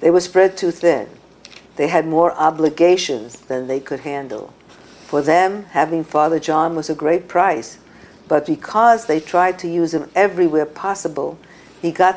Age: 50-69